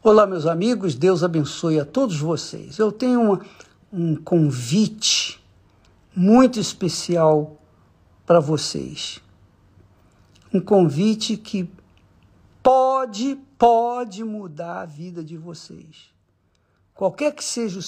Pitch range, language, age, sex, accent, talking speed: 150-215 Hz, Portuguese, 60-79, male, Brazilian, 100 wpm